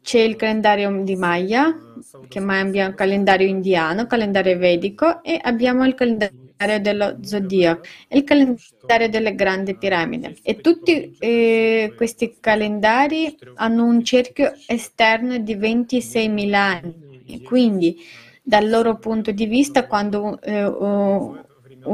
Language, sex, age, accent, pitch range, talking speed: Italian, female, 20-39, native, 200-250 Hz, 120 wpm